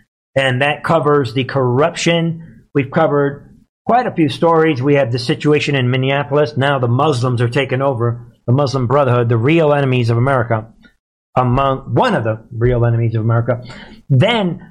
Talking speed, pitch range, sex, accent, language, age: 165 wpm, 125-160 Hz, male, American, English, 50-69